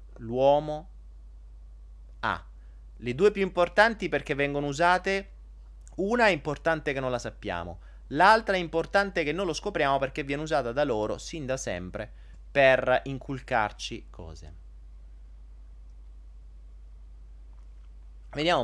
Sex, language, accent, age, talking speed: male, Italian, native, 30-49, 115 wpm